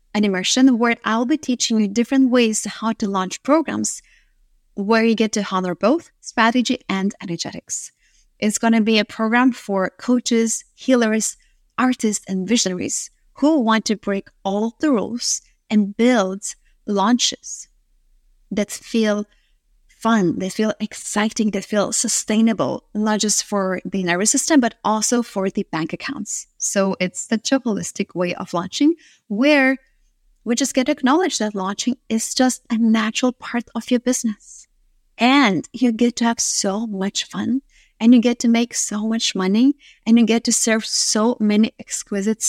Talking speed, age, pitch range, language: 155 wpm, 30-49, 205-245 Hz, English